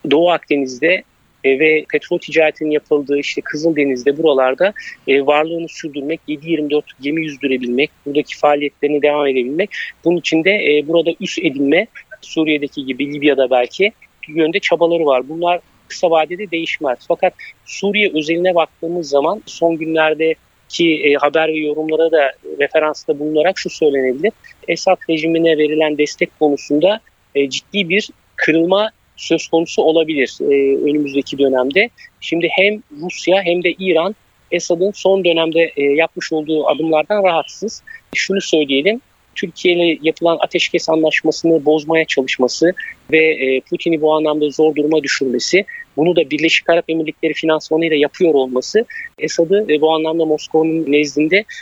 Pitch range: 150-175 Hz